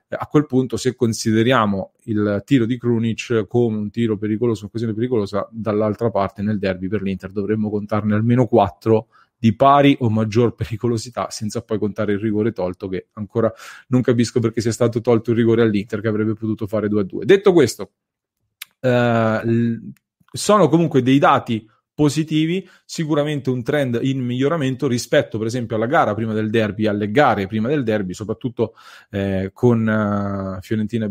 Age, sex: 30-49, male